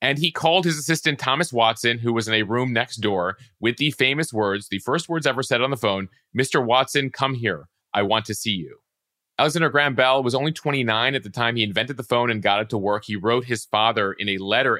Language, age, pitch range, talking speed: English, 30-49, 110-140 Hz, 245 wpm